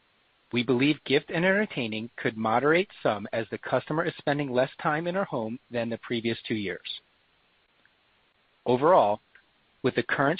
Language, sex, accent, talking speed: English, male, American, 155 wpm